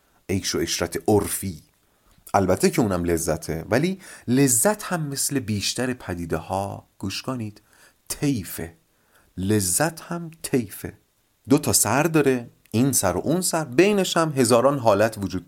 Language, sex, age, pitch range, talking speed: Persian, male, 30-49, 100-150 Hz, 130 wpm